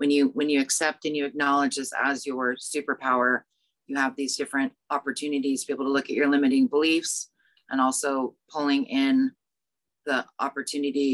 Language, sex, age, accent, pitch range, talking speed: English, female, 30-49, American, 130-155 Hz, 170 wpm